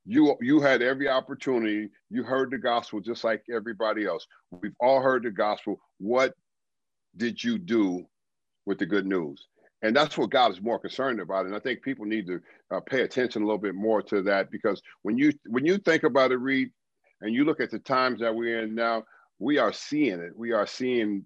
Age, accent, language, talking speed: 50-69, American, English, 210 wpm